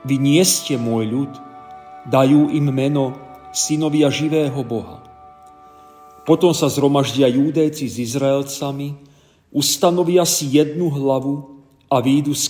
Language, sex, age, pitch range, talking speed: Slovak, male, 40-59, 120-155 Hz, 115 wpm